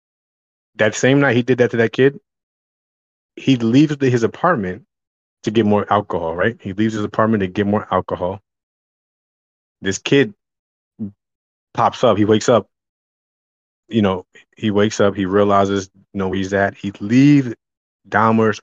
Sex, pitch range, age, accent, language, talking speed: male, 100-130 Hz, 20-39, American, English, 160 wpm